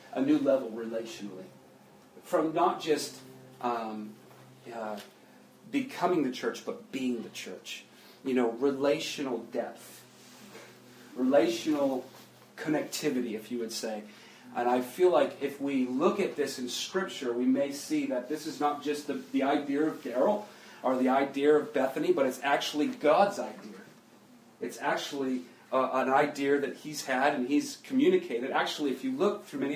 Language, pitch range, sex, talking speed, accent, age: English, 125-195 Hz, male, 155 wpm, American, 40-59